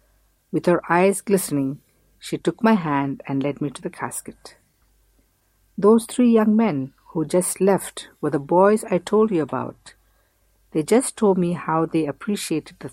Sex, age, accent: female, 60-79, Indian